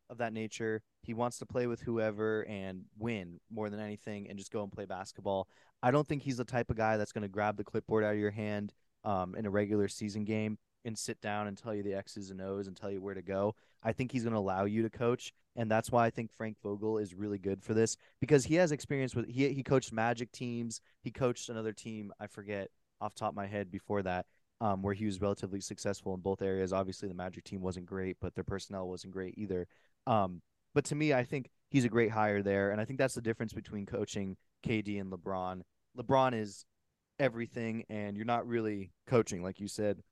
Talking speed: 235 wpm